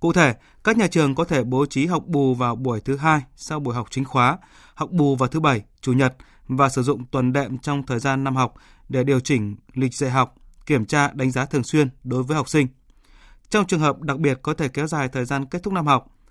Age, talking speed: 20-39, 250 wpm